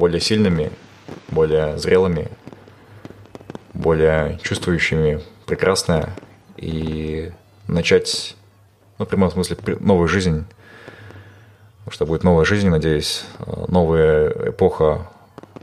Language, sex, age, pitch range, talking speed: Russian, male, 20-39, 85-115 Hz, 85 wpm